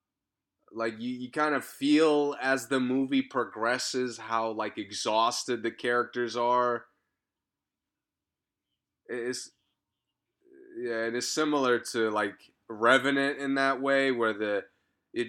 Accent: American